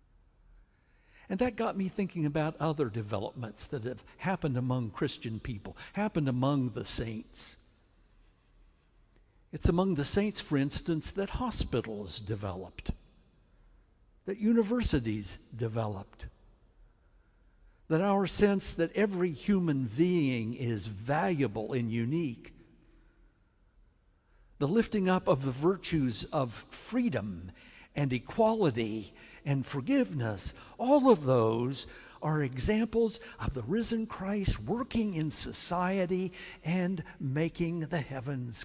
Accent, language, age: American, English, 60-79